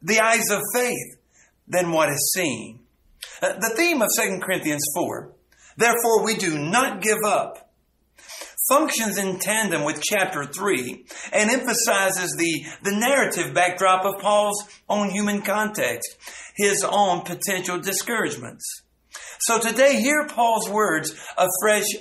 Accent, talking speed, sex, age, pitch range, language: American, 130 wpm, male, 50-69, 160-220 Hz, English